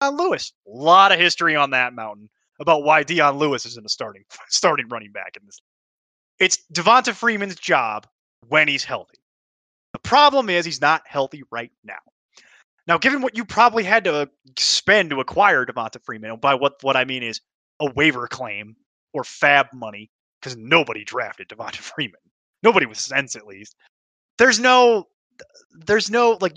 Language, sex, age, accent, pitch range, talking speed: English, male, 20-39, American, 130-190 Hz, 170 wpm